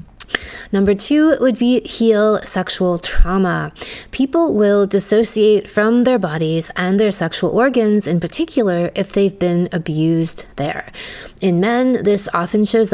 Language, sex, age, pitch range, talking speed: English, female, 20-39, 170-225 Hz, 135 wpm